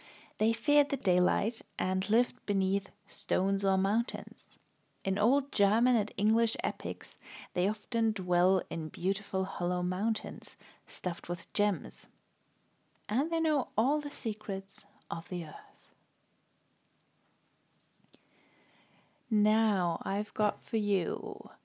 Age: 30-49